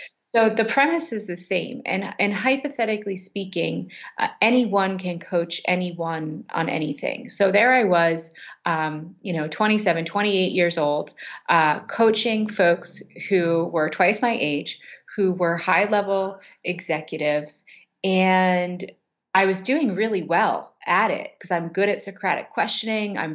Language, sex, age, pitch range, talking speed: English, female, 30-49, 180-210 Hz, 140 wpm